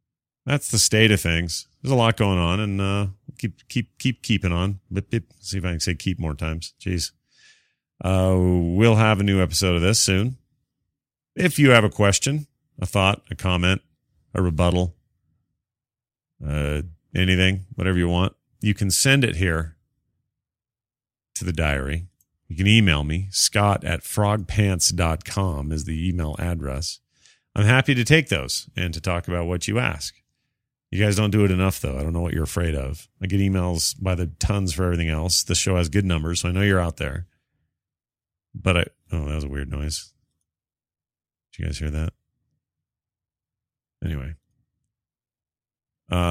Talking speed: 170 wpm